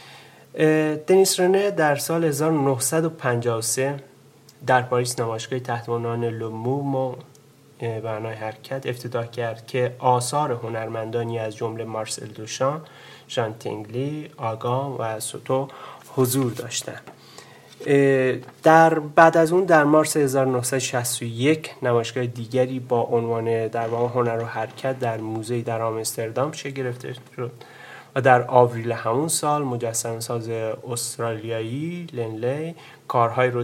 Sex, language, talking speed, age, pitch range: male, Persian, 110 wpm, 30-49, 115-140 Hz